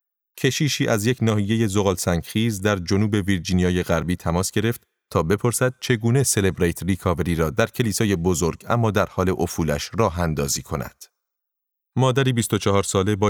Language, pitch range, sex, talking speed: Persian, 90-110 Hz, male, 145 wpm